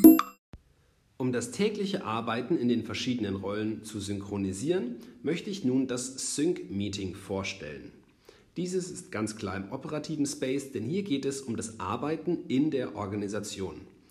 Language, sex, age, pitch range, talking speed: Amharic, male, 40-59, 105-145 Hz, 140 wpm